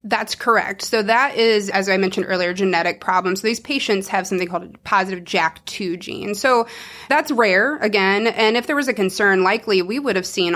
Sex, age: female, 30-49